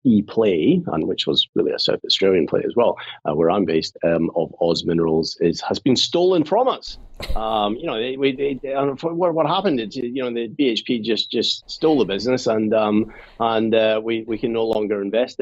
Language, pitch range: English, 85-110 Hz